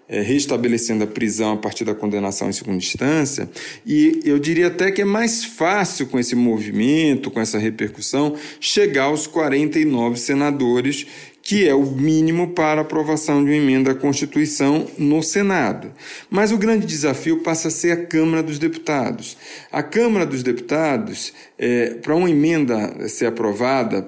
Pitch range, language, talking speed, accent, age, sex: 125-180 Hz, Portuguese, 155 wpm, Brazilian, 40-59, male